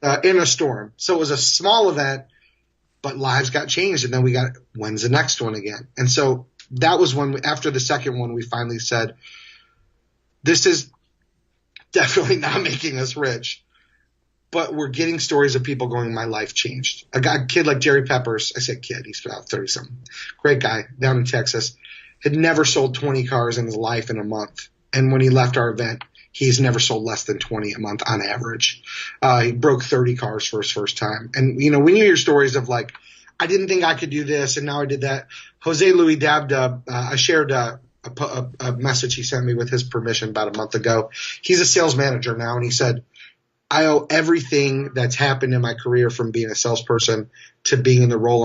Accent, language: American, English